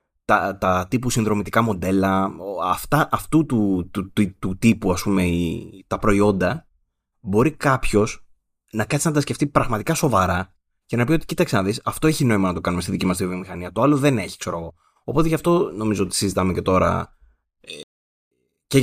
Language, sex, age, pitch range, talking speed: Greek, male, 20-39, 90-125 Hz, 175 wpm